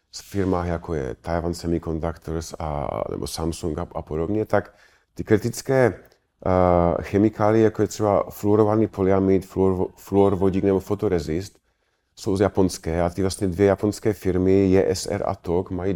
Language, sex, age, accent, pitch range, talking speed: Czech, male, 40-59, native, 85-105 Hz, 145 wpm